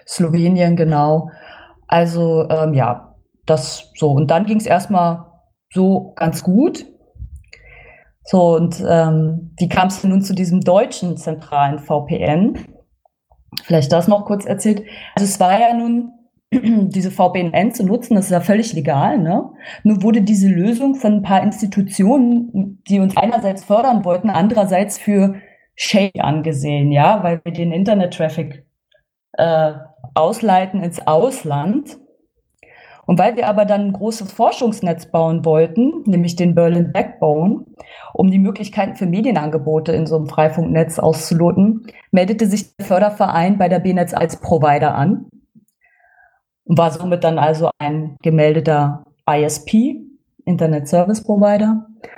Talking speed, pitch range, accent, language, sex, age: 135 wpm, 165-210 Hz, German, German, female, 20-39